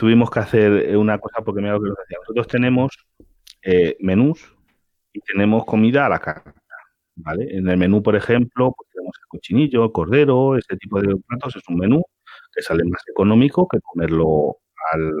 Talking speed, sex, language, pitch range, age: 170 wpm, male, Spanish, 100-145 Hz, 40-59